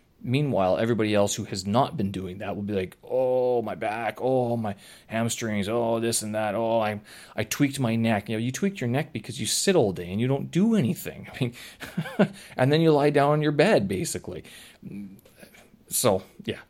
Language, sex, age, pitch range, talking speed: English, male, 30-49, 100-145 Hz, 205 wpm